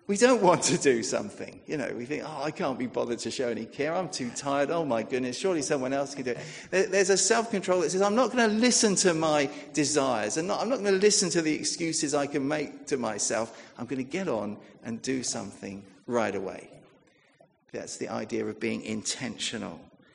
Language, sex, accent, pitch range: English, male, British, 130-195 Hz